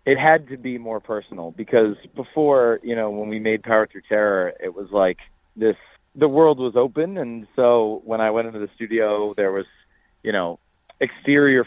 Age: 30-49